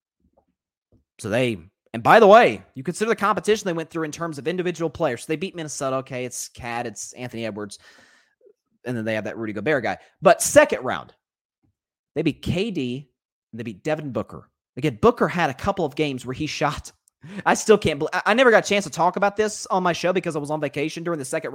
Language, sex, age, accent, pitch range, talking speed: English, male, 30-49, American, 130-200 Hz, 225 wpm